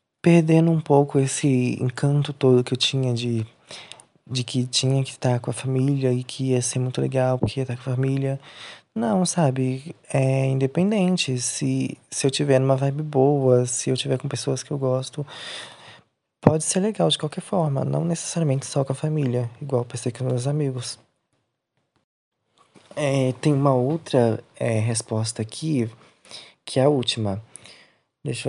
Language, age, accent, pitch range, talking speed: Portuguese, 20-39, Brazilian, 125-145 Hz, 165 wpm